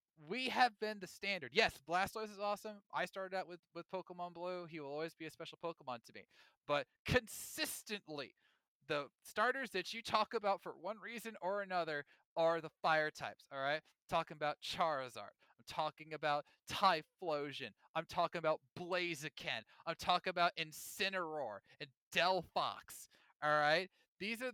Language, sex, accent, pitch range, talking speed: English, male, American, 150-200 Hz, 160 wpm